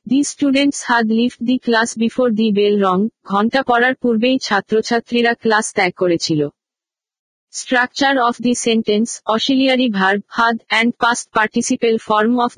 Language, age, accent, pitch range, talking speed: Bengali, 50-69, native, 215-245 Hz, 140 wpm